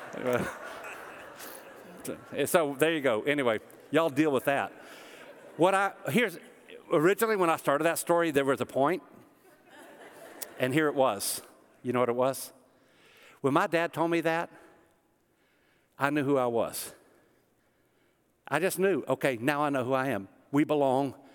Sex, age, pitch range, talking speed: male, 60-79, 135-175 Hz, 150 wpm